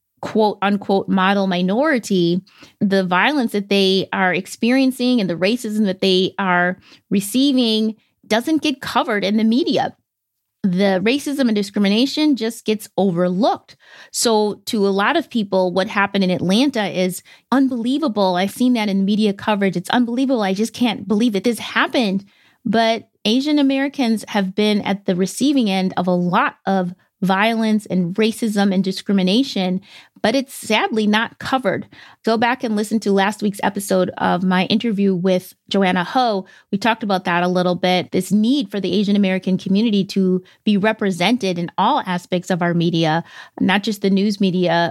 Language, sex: English, female